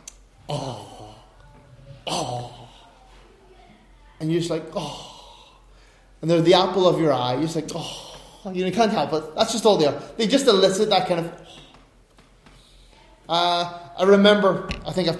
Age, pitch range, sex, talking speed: 20-39, 150-185 Hz, male, 155 wpm